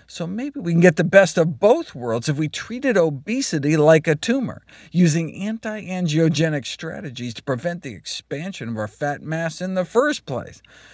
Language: English